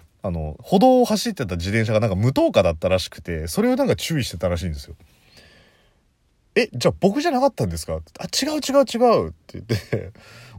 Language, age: Japanese, 30-49